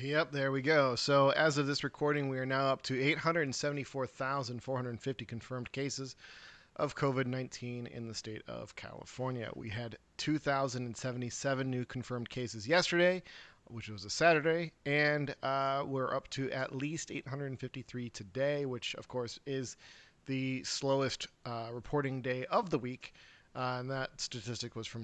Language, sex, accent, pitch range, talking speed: English, male, American, 125-145 Hz, 150 wpm